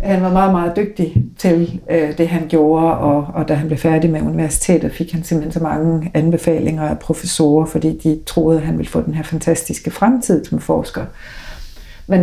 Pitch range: 155-175 Hz